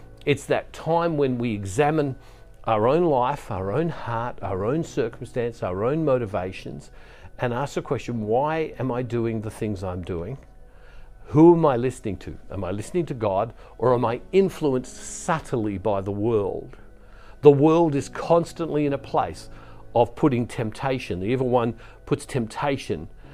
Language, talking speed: English, 160 wpm